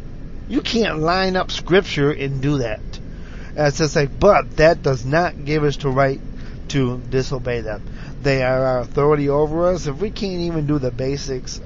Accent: American